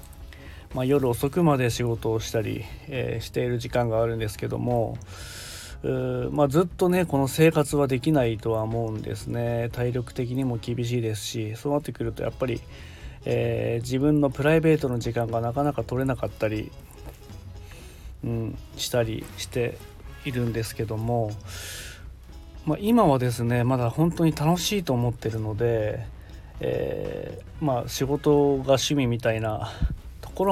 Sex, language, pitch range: male, Japanese, 105-135 Hz